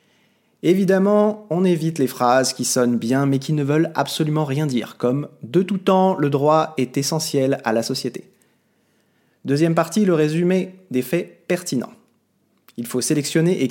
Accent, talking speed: French, 160 wpm